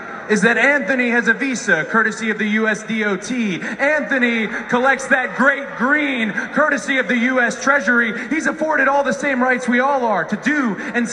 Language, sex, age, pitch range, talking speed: English, male, 30-49, 220-275 Hz, 180 wpm